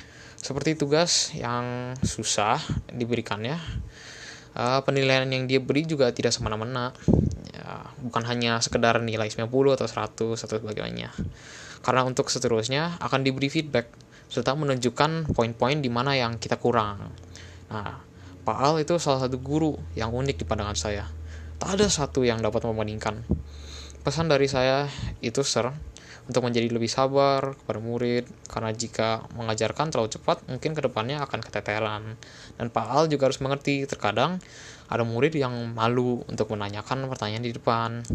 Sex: male